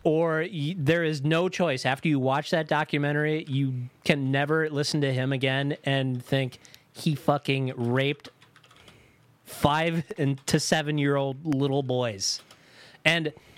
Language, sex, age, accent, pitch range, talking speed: English, male, 30-49, American, 130-160 Hz, 125 wpm